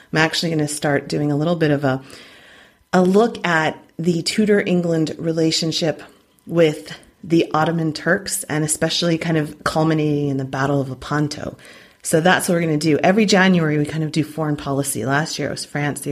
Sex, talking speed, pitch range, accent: female, 195 wpm, 140-180 Hz, American